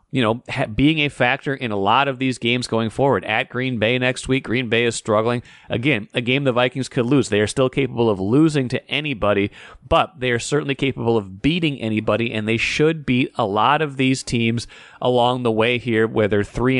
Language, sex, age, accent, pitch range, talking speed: English, male, 30-49, American, 115-135 Hz, 215 wpm